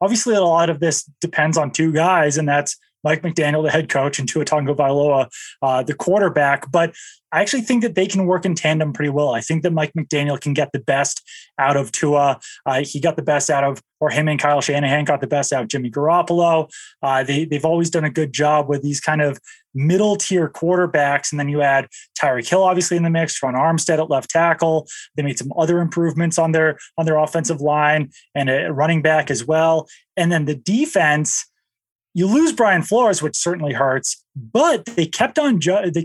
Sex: male